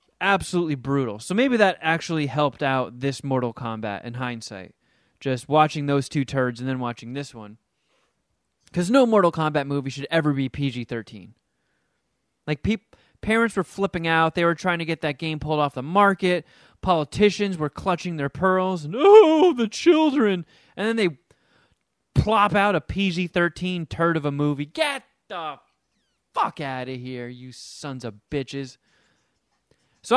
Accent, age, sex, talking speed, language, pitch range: American, 20-39, male, 160 wpm, English, 135-190 Hz